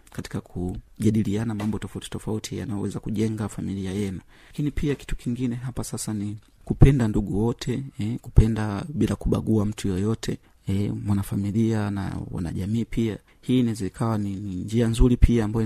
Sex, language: male, Swahili